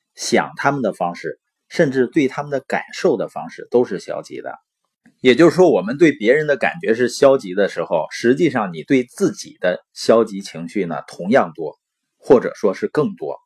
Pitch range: 120-175 Hz